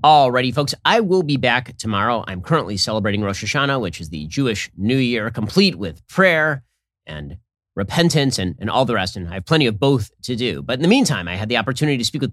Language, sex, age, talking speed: English, male, 30-49, 230 wpm